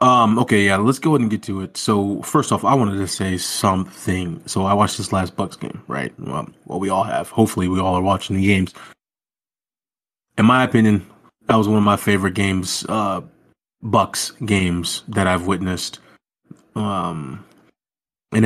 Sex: male